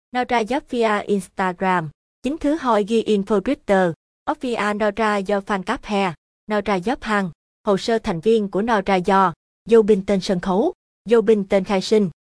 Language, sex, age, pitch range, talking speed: Vietnamese, female, 20-39, 185-225 Hz, 160 wpm